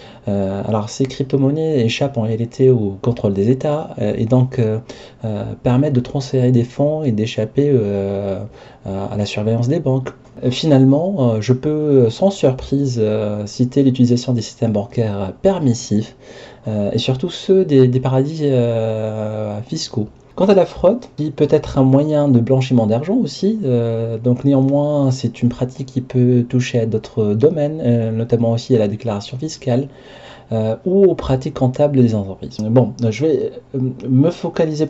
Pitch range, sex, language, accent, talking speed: 110-135 Hz, male, French, French, 140 wpm